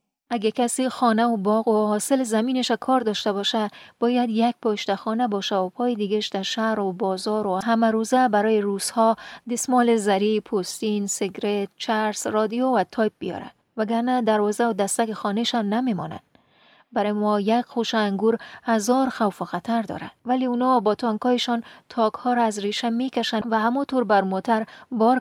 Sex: female